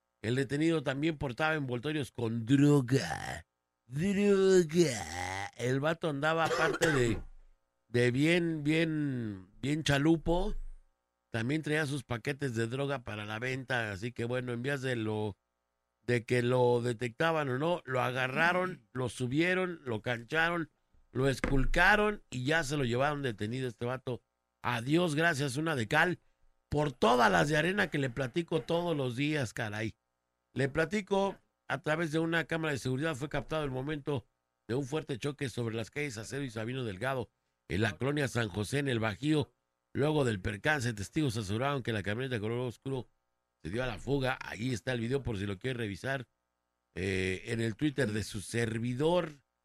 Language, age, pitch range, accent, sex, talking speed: Spanish, 50-69, 110-150 Hz, Mexican, male, 160 wpm